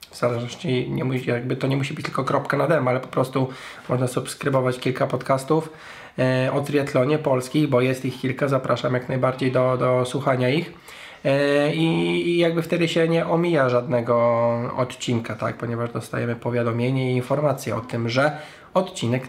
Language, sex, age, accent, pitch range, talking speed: Polish, male, 20-39, native, 125-145 Hz, 170 wpm